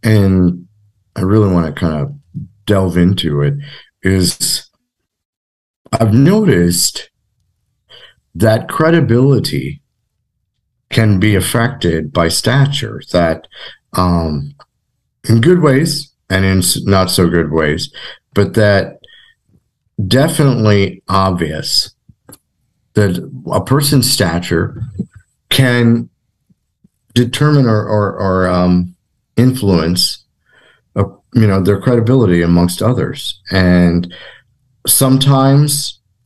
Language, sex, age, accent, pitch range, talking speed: English, male, 50-69, American, 90-120 Hz, 90 wpm